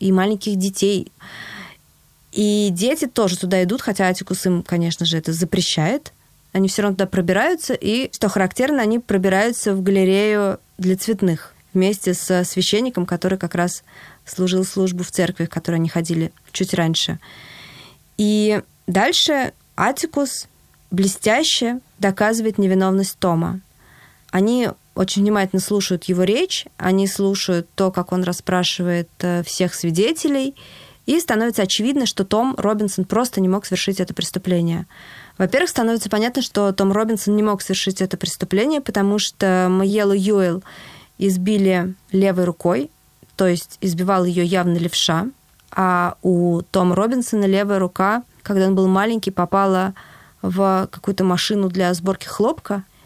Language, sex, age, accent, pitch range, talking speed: Russian, female, 20-39, native, 180-210 Hz, 135 wpm